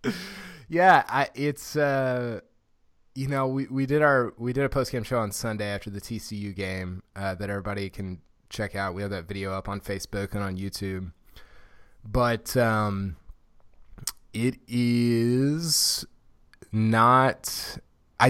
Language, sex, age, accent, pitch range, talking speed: English, male, 20-39, American, 100-125 Hz, 145 wpm